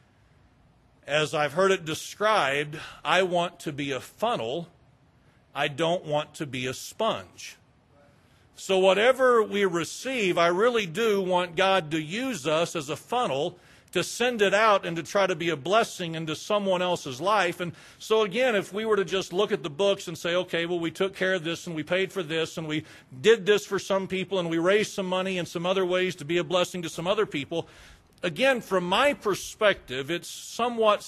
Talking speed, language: 200 wpm, English